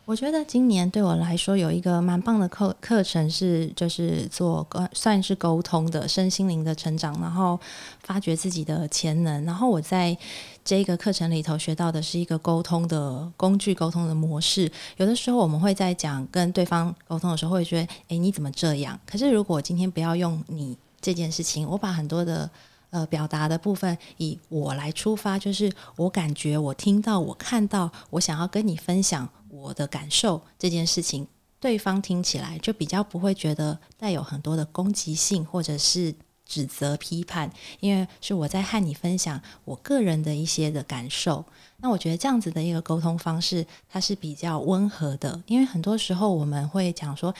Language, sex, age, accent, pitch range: Chinese, female, 20-39, native, 155-190 Hz